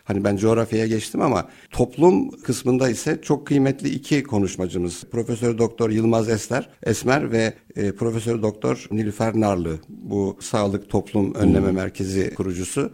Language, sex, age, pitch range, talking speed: Turkish, male, 60-79, 100-125 Hz, 130 wpm